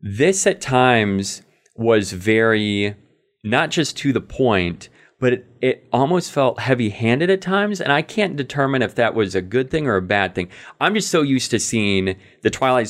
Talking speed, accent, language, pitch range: 190 wpm, American, English, 100-135 Hz